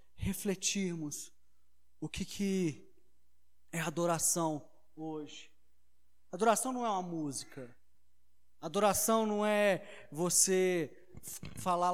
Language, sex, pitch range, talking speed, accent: Portuguese, male, 140-185 Hz, 85 wpm, Brazilian